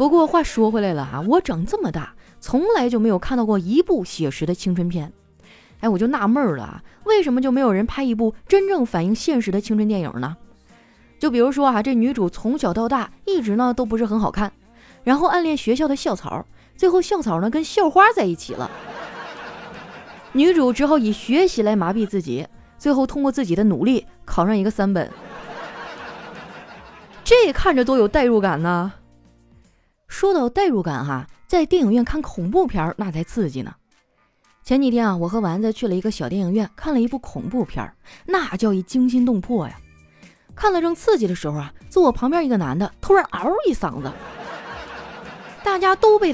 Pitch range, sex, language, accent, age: 185-280 Hz, female, Chinese, native, 20-39